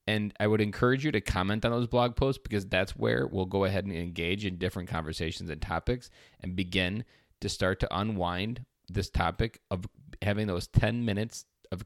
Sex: male